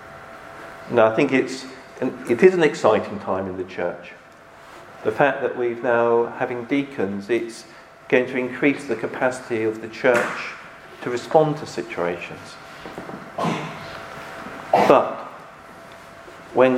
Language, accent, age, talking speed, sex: English, British, 50-69, 130 wpm, male